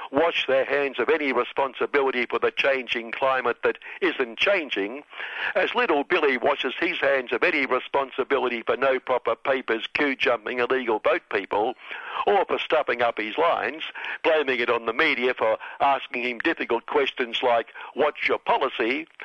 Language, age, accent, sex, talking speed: English, 60-79, British, male, 155 wpm